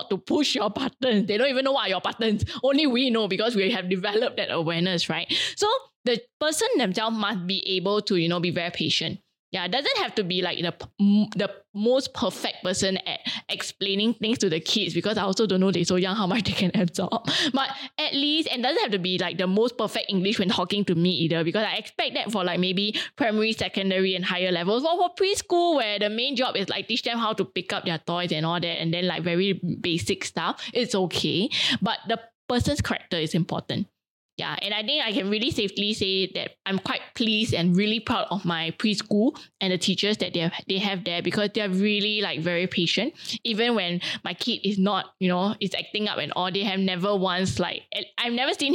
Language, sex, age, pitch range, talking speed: English, female, 10-29, 185-245 Hz, 230 wpm